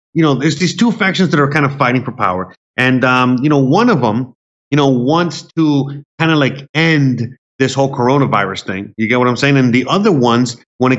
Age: 30-49